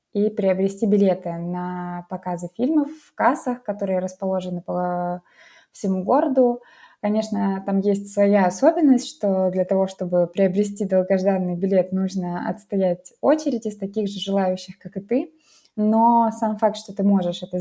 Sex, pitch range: female, 180-215 Hz